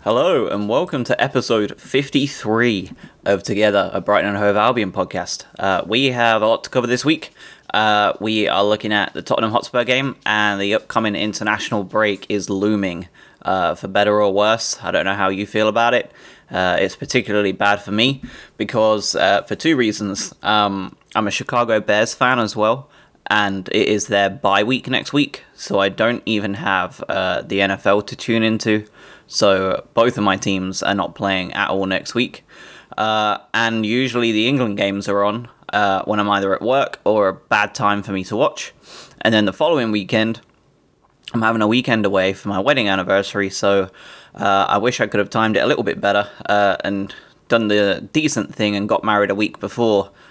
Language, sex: English, male